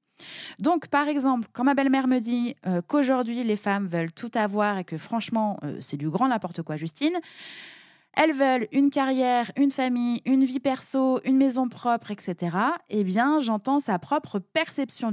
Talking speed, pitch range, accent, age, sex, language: 175 wpm, 195-270 Hz, French, 20-39, female, French